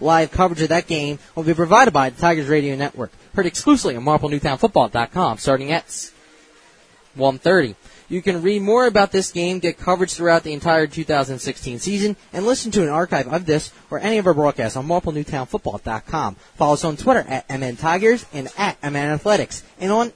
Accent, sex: American, male